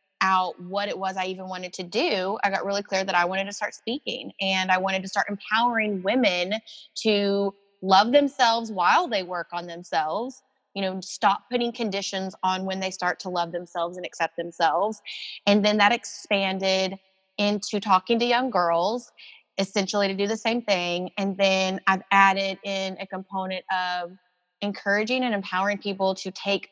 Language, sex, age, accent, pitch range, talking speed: English, female, 20-39, American, 185-205 Hz, 175 wpm